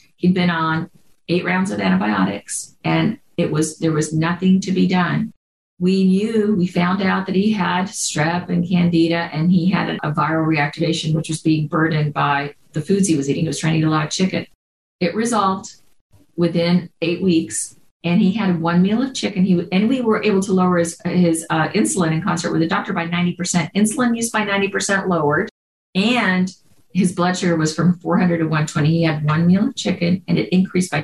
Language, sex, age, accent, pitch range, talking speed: English, female, 50-69, American, 160-185 Hz, 210 wpm